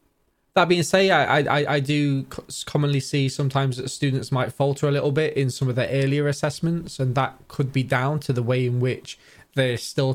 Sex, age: male, 20-39